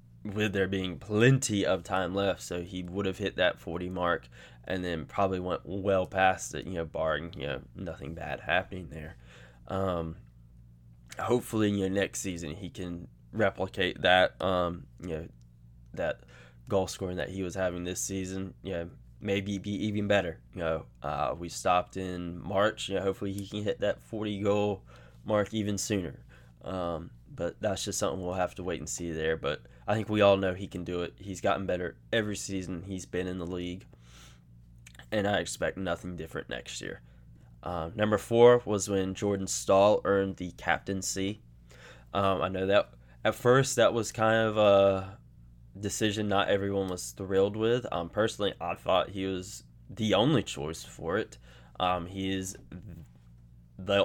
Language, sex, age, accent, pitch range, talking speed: English, male, 10-29, American, 75-100 Hz, 175 wpm